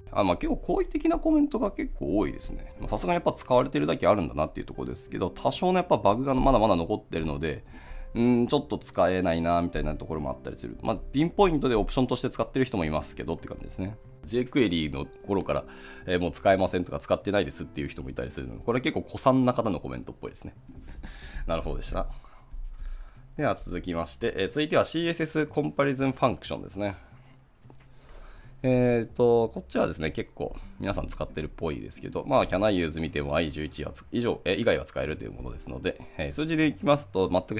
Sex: male